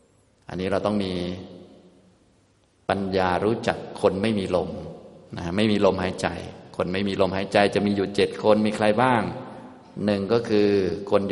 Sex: male